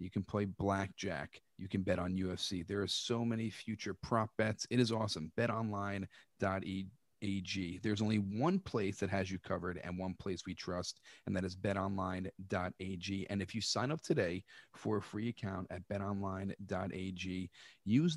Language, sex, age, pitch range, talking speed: English, male, 40-59, 95-110 Hz, 170 wpm